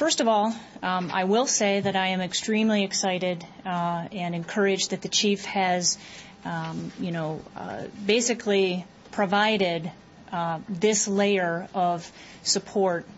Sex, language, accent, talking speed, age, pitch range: female, English, American, 135 wpm, 30-49, 180-210 Hz